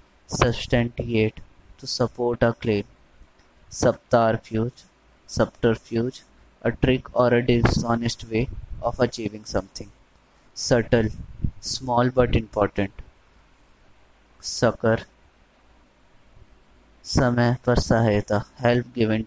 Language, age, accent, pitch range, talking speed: Hindi, 20-39, native, 105-120 Hz, 85 wpm